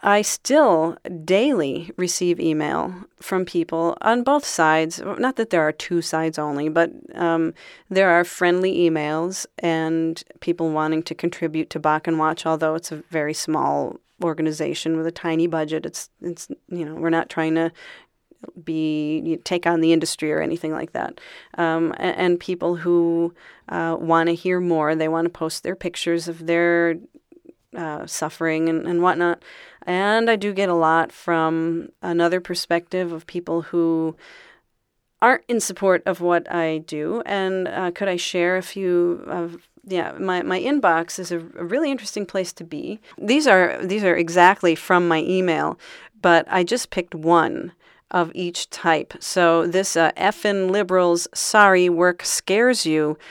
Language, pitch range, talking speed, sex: English, 165-185 Hz, 165 wpm, female